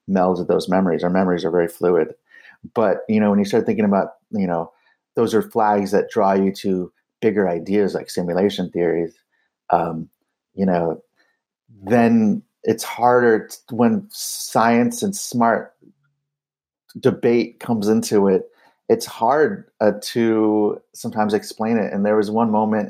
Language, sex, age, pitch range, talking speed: English, male, 30-49, 95-115 Hz, 150 wpm